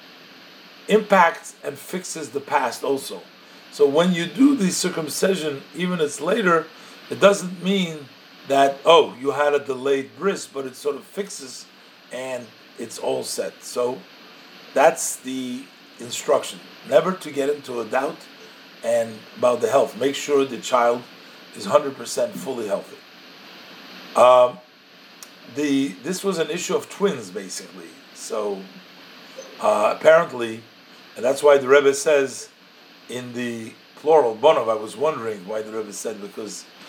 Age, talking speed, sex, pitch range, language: 50-69, 145 wpm, male, 135-190 Hz, English